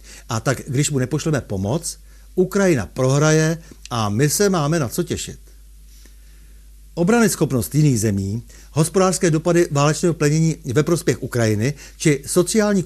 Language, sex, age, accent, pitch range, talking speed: Czech, male, 60-79, native, 120-165 Hz, 130 wpm